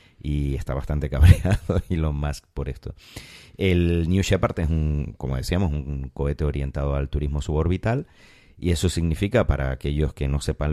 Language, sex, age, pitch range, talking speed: Spanish, male, 30-49, 70-95 Hz, 160 wpm